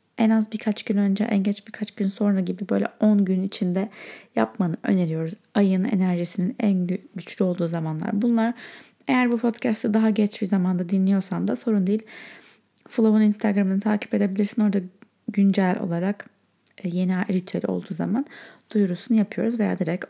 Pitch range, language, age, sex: 190-230 Hz, Turkish, 30-49, female